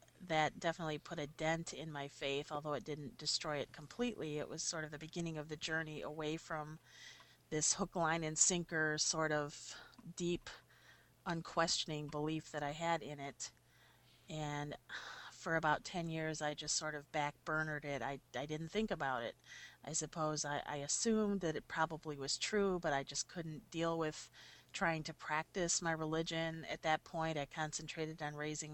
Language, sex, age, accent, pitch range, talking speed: English, female, 40-59, American, 150-165 Hz, 175 wpm